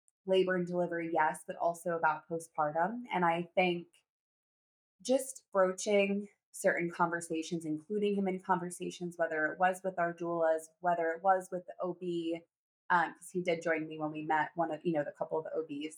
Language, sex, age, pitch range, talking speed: English, female, 20-39, 165-195 Hz, 185 wpm